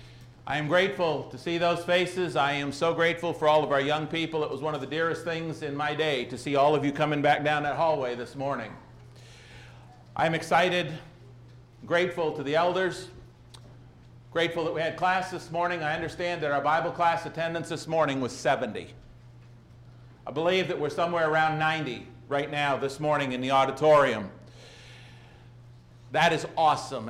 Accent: American